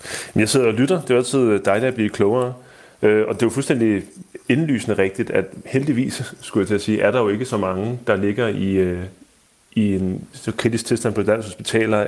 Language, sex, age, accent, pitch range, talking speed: Danish, male, 30-49, native, 100-125 Hz, 205 wpm